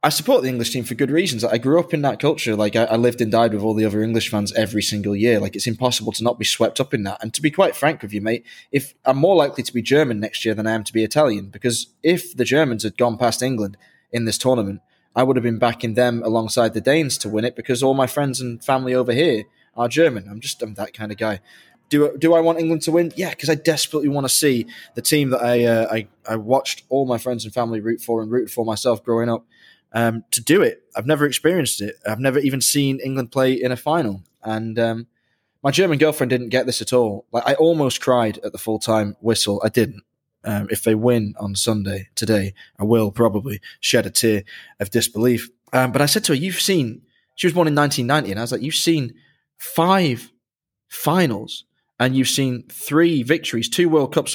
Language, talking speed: English, 240 wpm